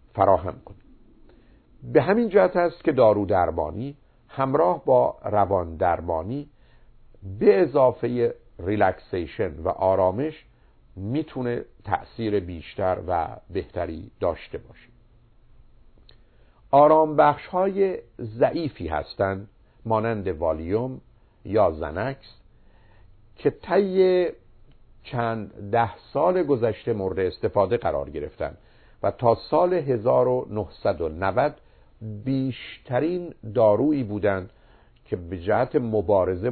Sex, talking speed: male, 90 wpm